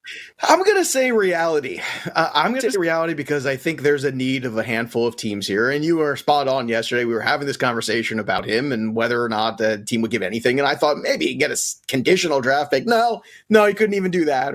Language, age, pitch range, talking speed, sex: English, 30-49, 120-180 Hz, 250 wpm, male